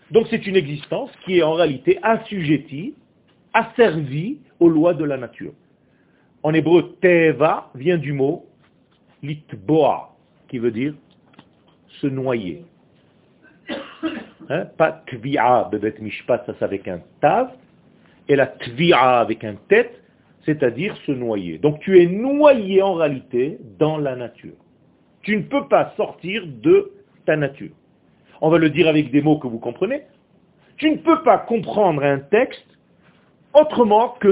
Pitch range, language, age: 150-225 Hz, French, 40-59